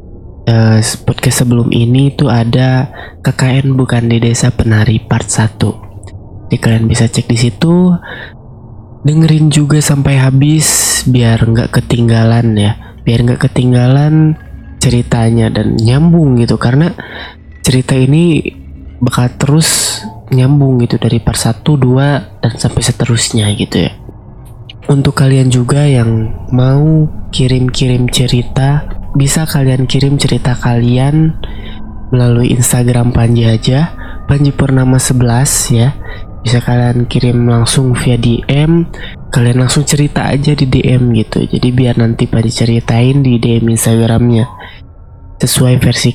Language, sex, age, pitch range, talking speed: Indonesian, male, 20-39, 115-135 Hz, 120 wpm